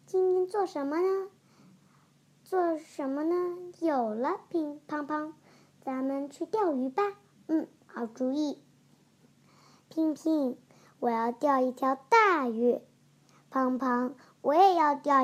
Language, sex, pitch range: Chinese, male, 265-370 Hz